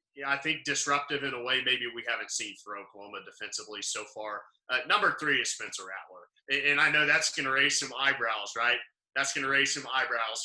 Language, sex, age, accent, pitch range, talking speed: English, male, 30-49, American, 130-155 Hz, 220 wpm